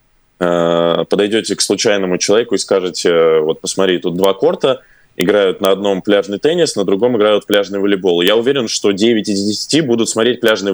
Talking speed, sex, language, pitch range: 170 wpm, male, Russian, 95-115 Hz